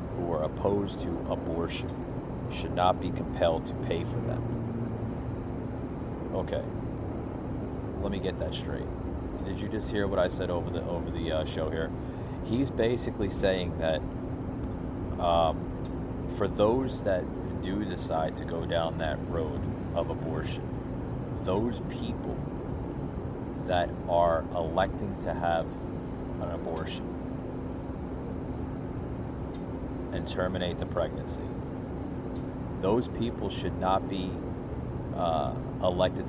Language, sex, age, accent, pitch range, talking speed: English, male, 30-49, American, 85-115 Hz, 115 wpm